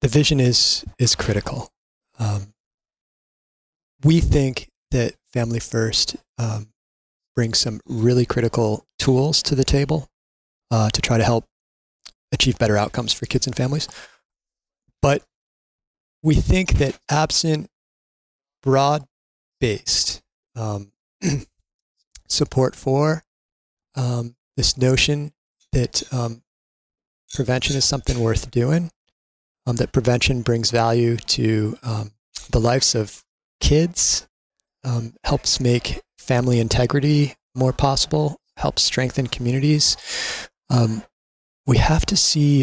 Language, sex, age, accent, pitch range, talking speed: English, male, 30-49, American, 110-135 Hz, 110 wpm